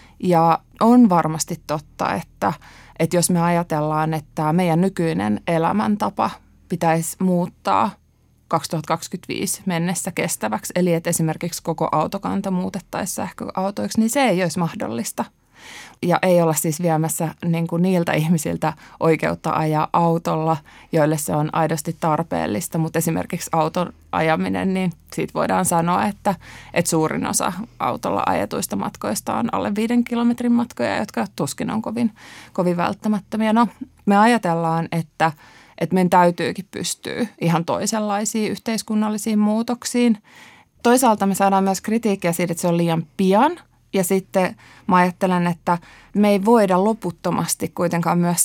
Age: 20-39